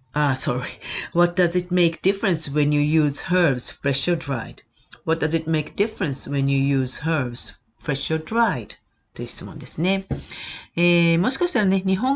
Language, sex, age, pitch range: Japanese, female, 40-59, 135-195 Hz